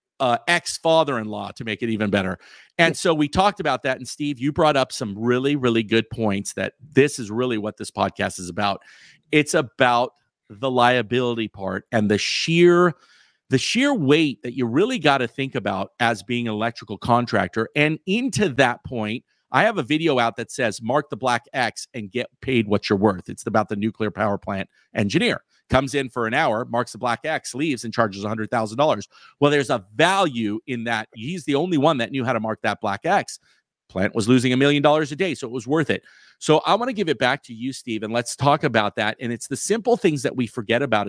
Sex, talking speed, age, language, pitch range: male, 220 wpm, 50-69, English, 110-145 Hz